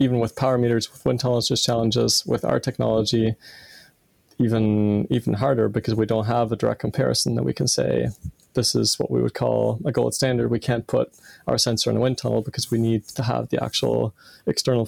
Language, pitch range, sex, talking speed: English, 110-125 Hz, male, 210 wpm